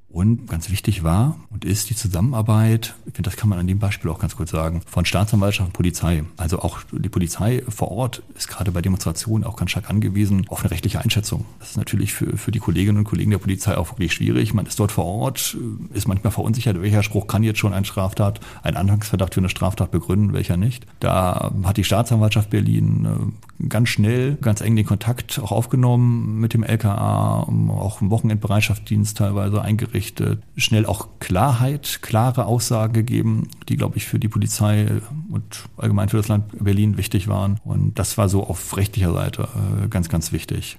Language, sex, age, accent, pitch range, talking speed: German, male, 40-59, German, 95-115 Hz, 190 wpm